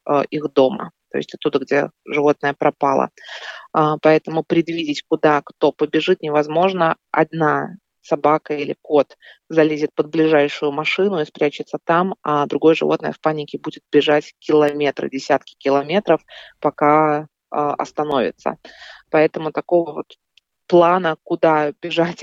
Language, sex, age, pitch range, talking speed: Russian, female, 20-39, 145-160 Hz, 115 wpm